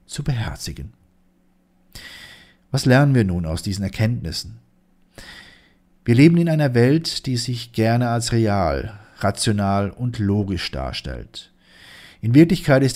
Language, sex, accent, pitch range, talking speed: German, male, German, 105-135 Hz, 120 wpm